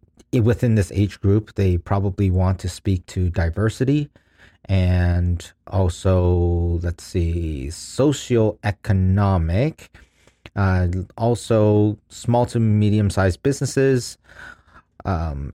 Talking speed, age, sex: 95 wpm, 40-59, male